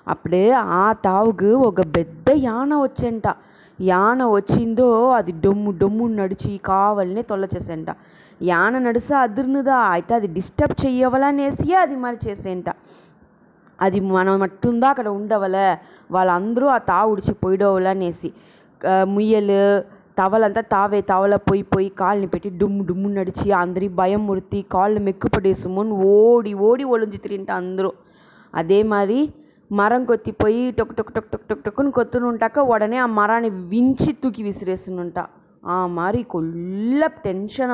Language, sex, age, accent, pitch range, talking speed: English, female, 20-39, Indian, 190-235 Hz, 105 wpm